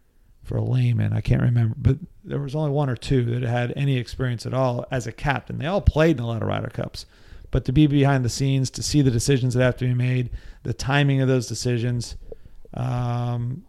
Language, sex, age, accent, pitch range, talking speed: English, male, 40-59, American, 115-135 Hz, 230 wpm